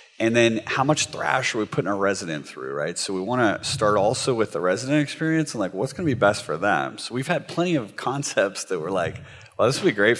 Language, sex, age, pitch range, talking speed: English, male, 30-49, 95-125 Hz, 265 wpm